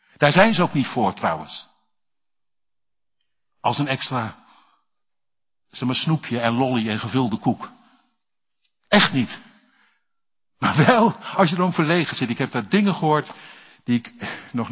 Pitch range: 120-170 Hz